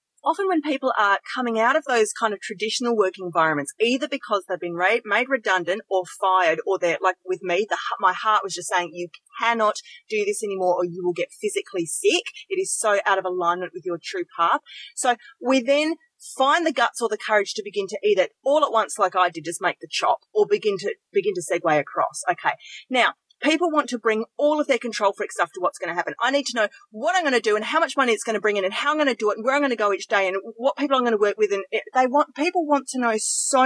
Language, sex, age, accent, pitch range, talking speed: English, female, 30-49, Australian, 195-285 Hz, 265 wpm